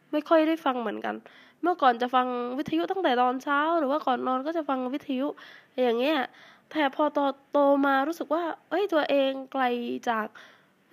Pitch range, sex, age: 235-295 Hz, female, 10-29